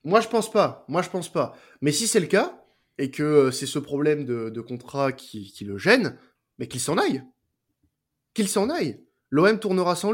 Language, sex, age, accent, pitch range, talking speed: French, male, 20-39, French, 135-185 Hz, 215 wpm